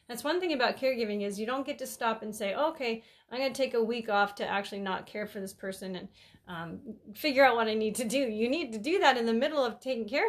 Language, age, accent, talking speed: English, 30-49, American, 280 wpm